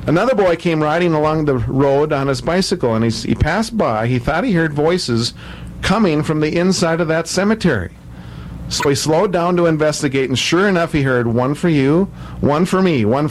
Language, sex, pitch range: English, male, 125-180 Hz